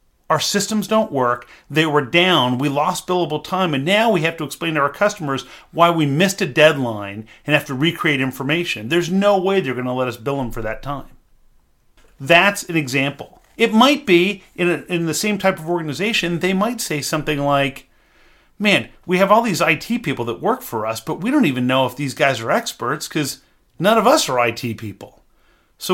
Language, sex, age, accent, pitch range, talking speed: English, male, 40-59, American, 140-200 Hz, 210 wpm